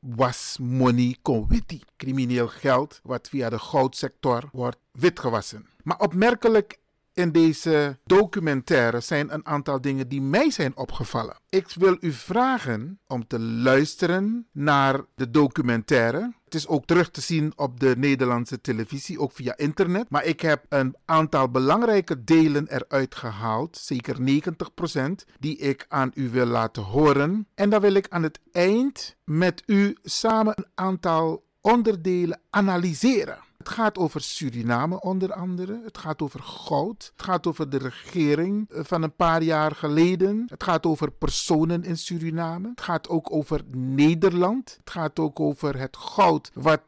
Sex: male